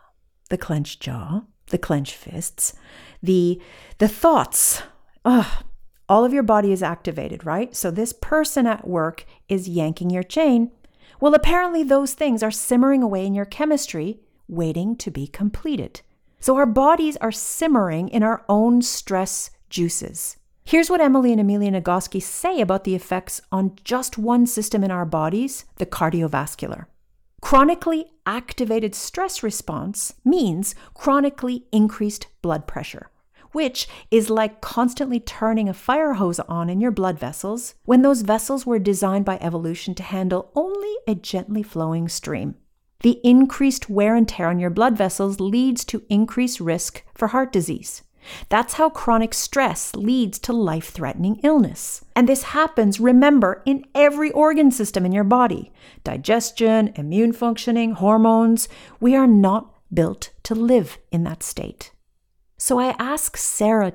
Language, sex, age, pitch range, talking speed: English, female, 50-69, 185-255 Hz, 145 wpm